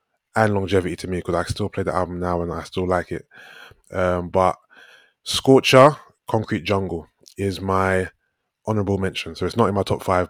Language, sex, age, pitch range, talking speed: English, male, 20-39, 90-115 Hz, 185 wpm